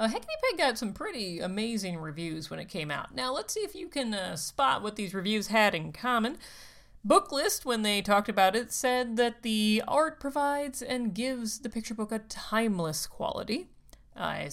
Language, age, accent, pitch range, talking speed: English, 40-59, American, 180-250 Hz, 190 wpm